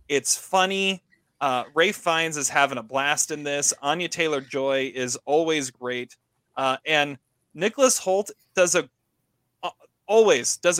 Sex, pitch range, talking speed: male, 135-190 Hz, 140 wpm